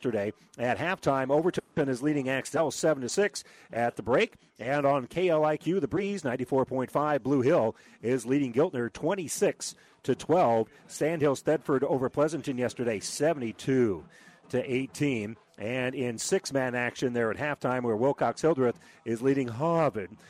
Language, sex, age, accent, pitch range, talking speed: English, male, 40-59, American, 120-145 Hz, 160 wpm